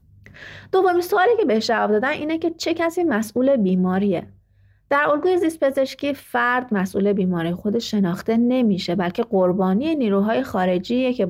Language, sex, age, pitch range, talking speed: Persian, female, 30-49, 175-245 Hz, 145 wpm